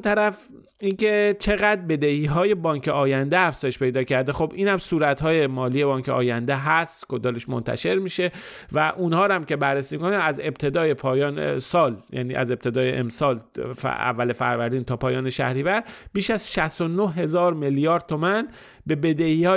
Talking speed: 155 wpm